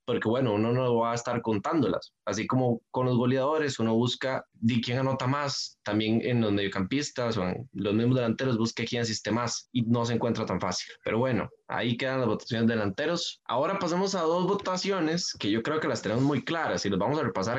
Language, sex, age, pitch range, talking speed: Spanish, male, 20-39, 115-155 Hz, 215 wpm